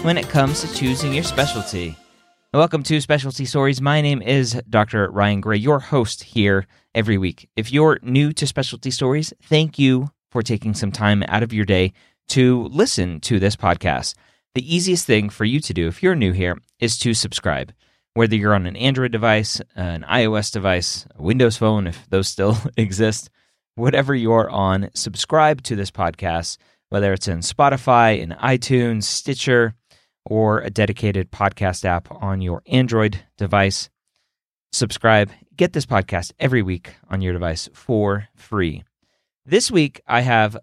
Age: 30-49